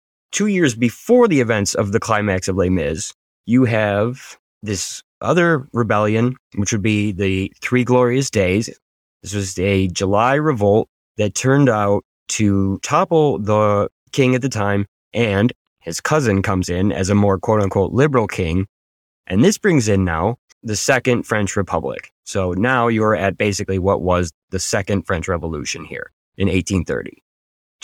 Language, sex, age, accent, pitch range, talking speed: English, male, 20-39, American, 95-120 Hz, 155 wpm